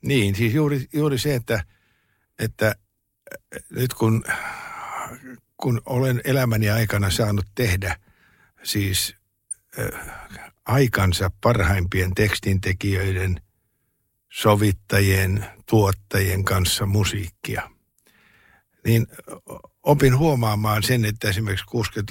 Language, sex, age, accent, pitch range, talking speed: Finnish, male, 60-79, native, 100-120 Hz, 80 wpm